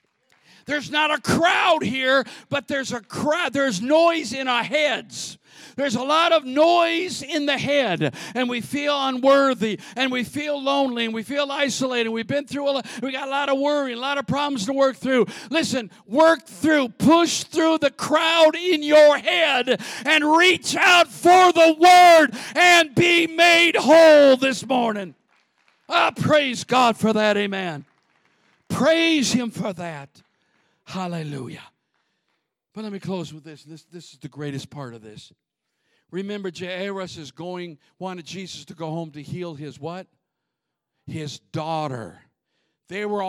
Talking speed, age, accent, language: 160 wpm, 50-69, American, English